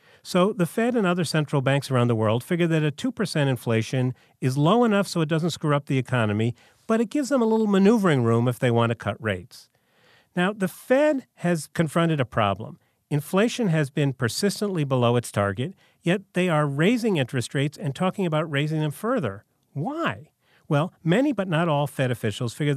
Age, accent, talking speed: 40-59, American, 195 wpm